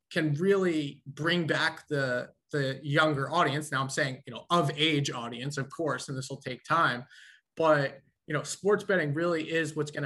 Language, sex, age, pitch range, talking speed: English, male, 20-39, 135-160 Hz, 190 wpm